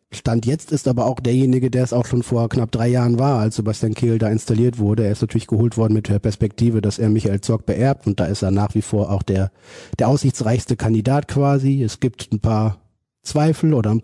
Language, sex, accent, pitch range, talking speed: German, male, German, 100-120 Hz, 230 wpm